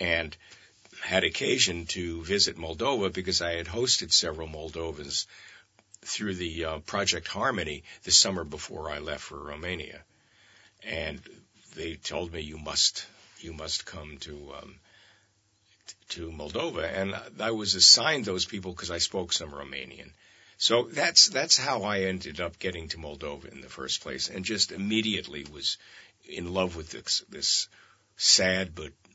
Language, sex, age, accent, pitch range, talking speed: English, male, 60-79, American, 80-100 Hz, 150 wpm